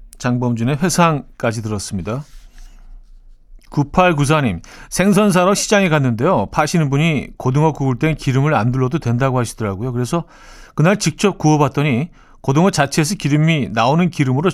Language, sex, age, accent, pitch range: Korean, male, 40-59, native, 120-165 Hz